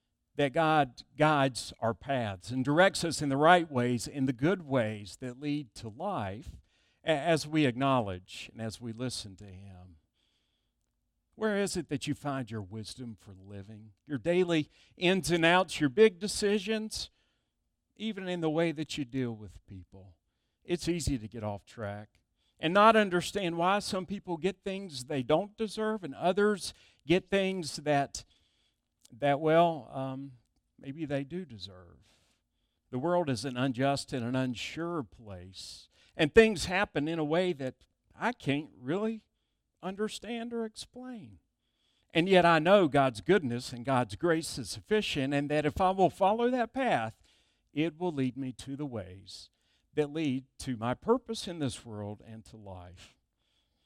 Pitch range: 110-175 Hz